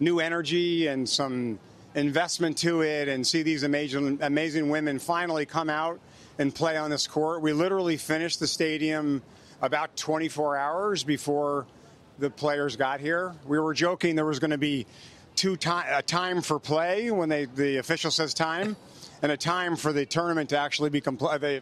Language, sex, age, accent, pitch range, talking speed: English, male, 40-59, American, 145-160 Hz, 180 wpm